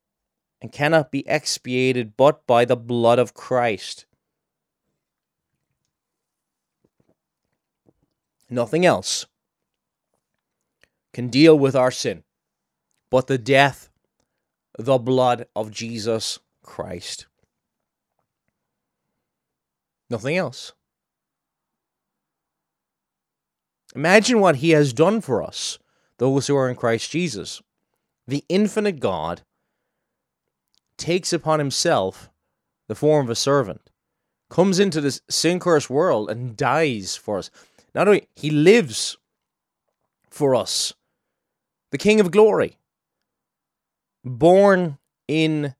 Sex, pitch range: male, 115-160 Hz